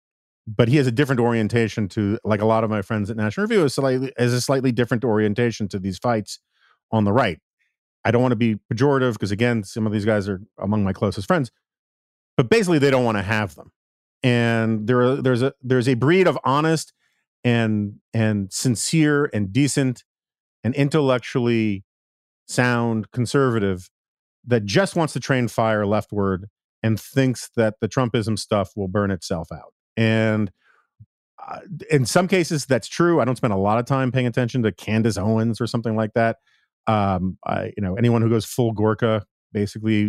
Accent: American